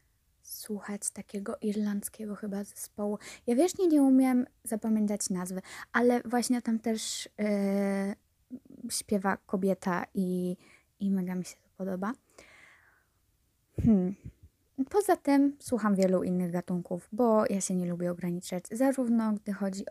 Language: Polish